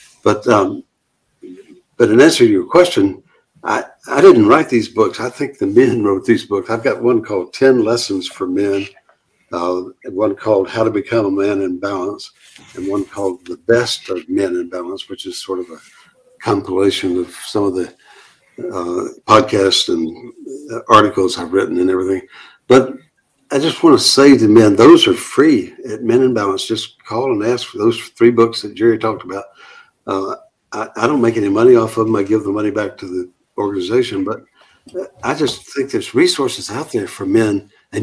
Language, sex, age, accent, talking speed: English, male, 60-79, American, 190 wpm